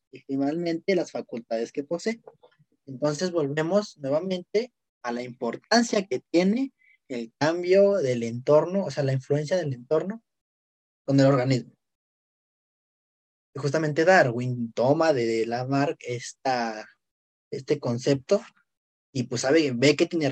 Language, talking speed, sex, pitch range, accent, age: Spanish, 120 wpm, male, 125-175 Hz, Mexican, 20-39